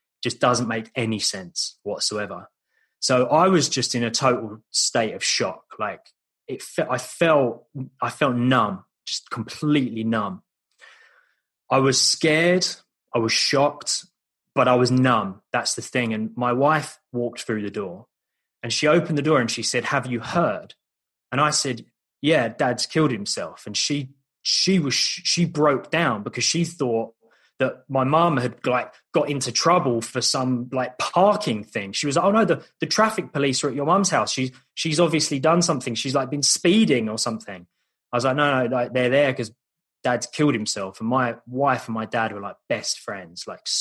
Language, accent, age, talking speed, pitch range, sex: English, British, 20-39, 185 wpm, 115-150 Hz, male